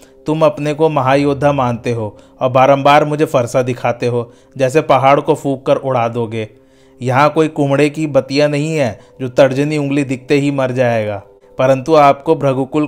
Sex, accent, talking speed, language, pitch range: male, native, 170 wpm, Hindi, 130-150 Hz